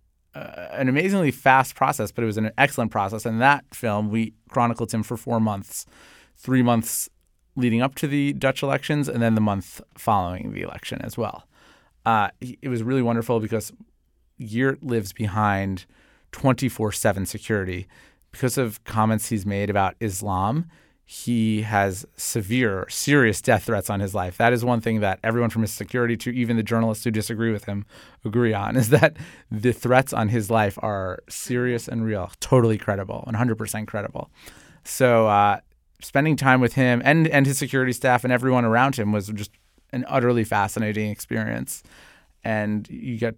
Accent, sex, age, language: American, male, 30-49, English